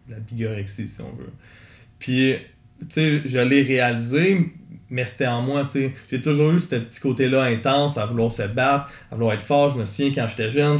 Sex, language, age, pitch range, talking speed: male, French, 20-39, 120-155 Hz, 210 wpm